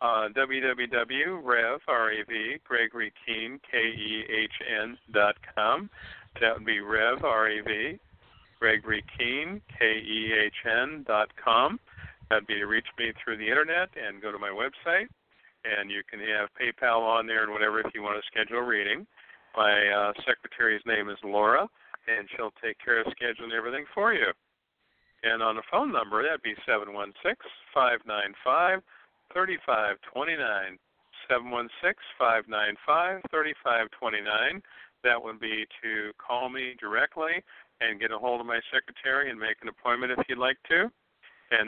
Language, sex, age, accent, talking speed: English, male, 50-69, American, 125 wpm